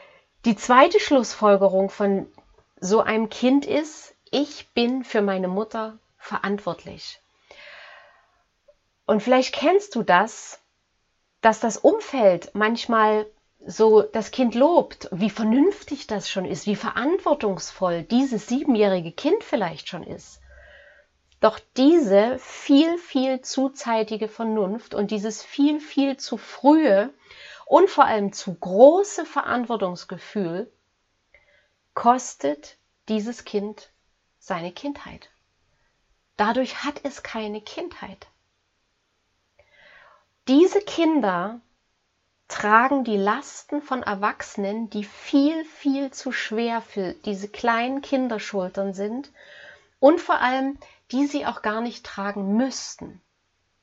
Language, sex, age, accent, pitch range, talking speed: German, female, 30-49, German, 205-275 Hz, 105 wpm